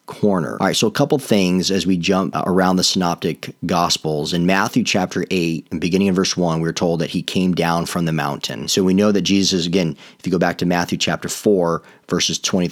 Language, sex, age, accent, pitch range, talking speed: English, male, 40-59, American, 85-100 Hz, 230 wpm